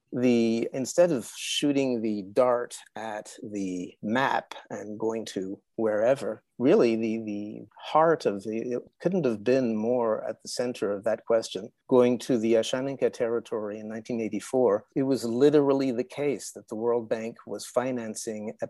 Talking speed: 155 wpm